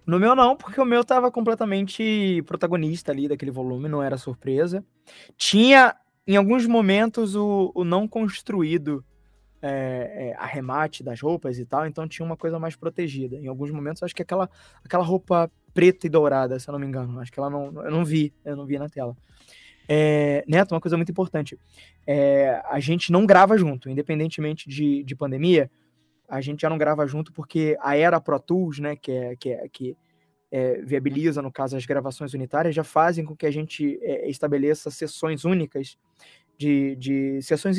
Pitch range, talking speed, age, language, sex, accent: 140-180 Hz, 175 wpm, 20-39, Portuguese, male, Brazilian